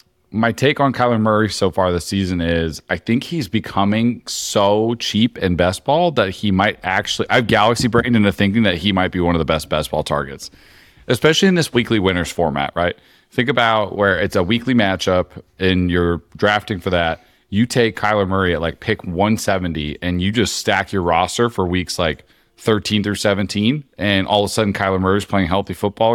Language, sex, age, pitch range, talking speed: English, male, 30-49, 90-110 Hz, 200 wpm